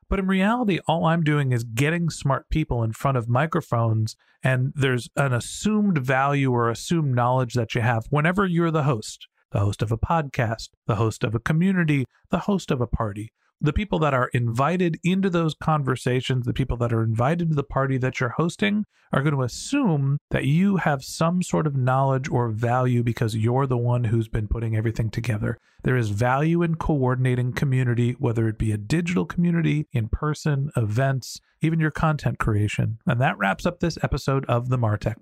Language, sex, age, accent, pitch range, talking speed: English, male, 40-59, American, 125-170 Hz, 195 wpm